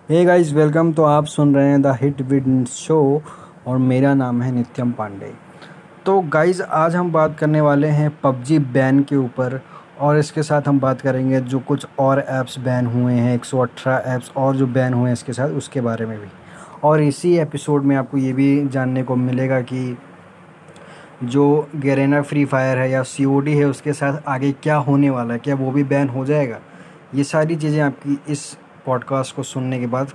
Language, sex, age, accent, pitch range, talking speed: Hindi, male, 20-39, native, 125-145 Hz, 195 wpm